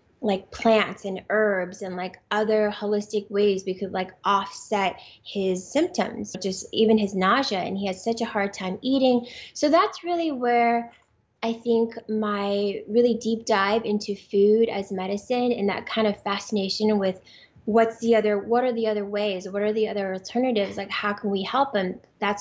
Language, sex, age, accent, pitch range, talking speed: English, female, 20-39, American, 190-230 Hz, 180 wpm